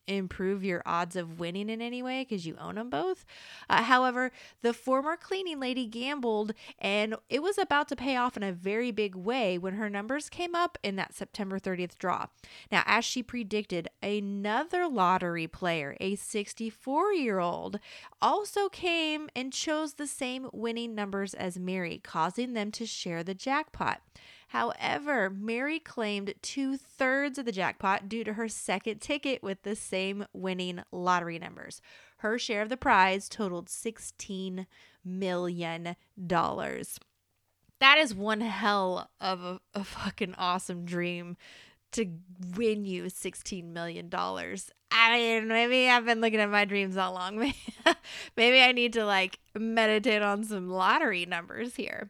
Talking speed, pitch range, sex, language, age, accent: 150 wpm, 185-250 Hz, female, English, 30-49, American